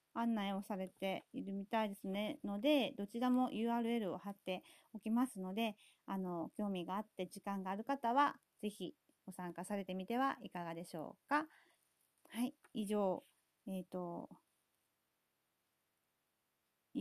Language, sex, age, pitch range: Japanese, female, 40-59, 185-235 Hz